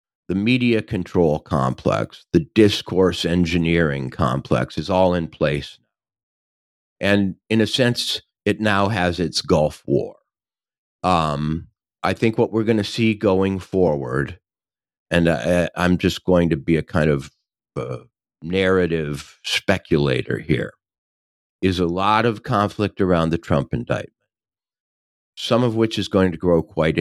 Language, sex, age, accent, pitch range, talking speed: English, male, 50-69, American, 75-100 Hz, 135 wpm